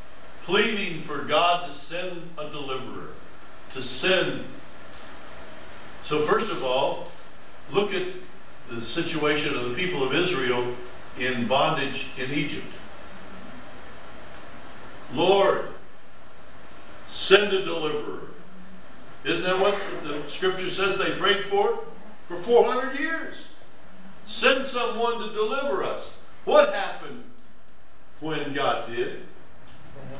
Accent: American